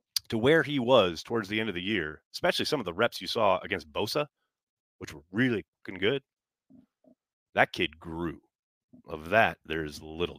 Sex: male